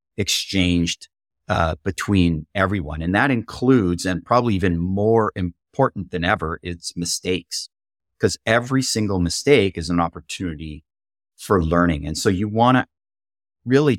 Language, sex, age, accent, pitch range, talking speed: English, male, 30-49, American, 80-95 Hz, 135 wpm